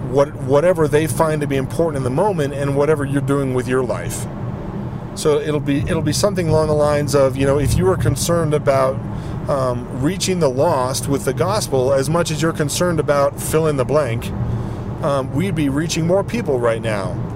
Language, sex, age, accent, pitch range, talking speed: English, male, 40-59, American, 125-155 Hz, 205 wpm